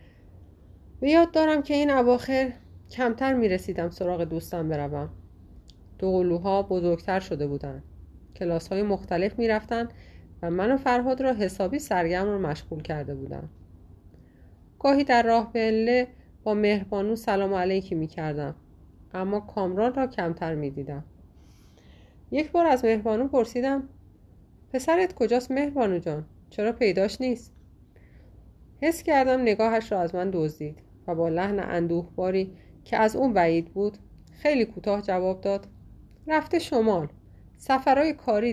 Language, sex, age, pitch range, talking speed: Persian, female, 30-49, 160-240 Hz, 125 wpm